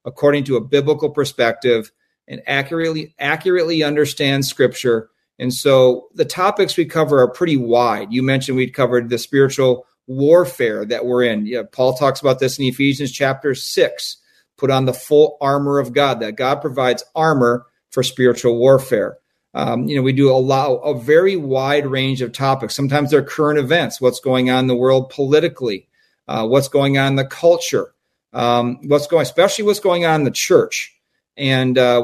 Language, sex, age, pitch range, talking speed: English, male, 40-59, 130-155 Hz, 180 wpm